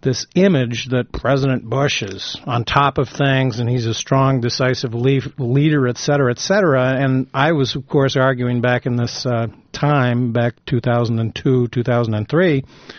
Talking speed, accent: 150 wpm, American